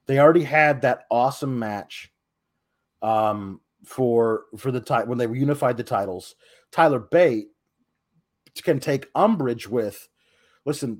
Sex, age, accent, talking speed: male, 40-59, American, 125 wpm